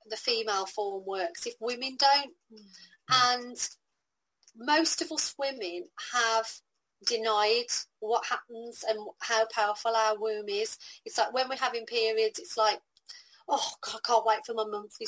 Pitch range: 215-285 Hz